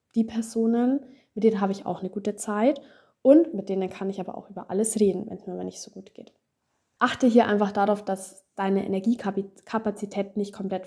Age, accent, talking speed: 20-39, German, 200 wpm